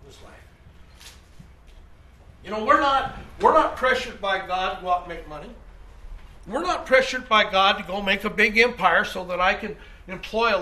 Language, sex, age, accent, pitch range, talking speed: English, male, 60-79, American, 150-250 Hz, 185 wpm